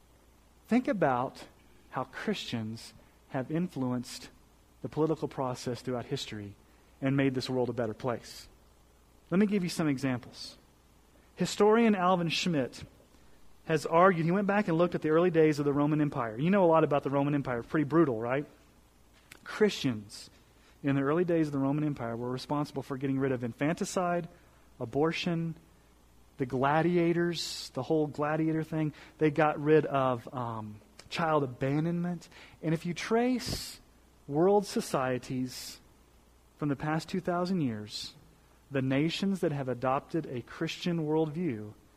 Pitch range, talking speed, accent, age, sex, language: 115-165 Hz, 145 wpm, American, 40-59, male, English